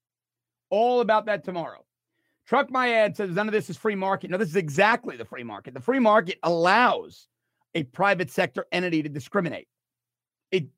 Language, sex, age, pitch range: English, male, 40-59, 160-225 Hz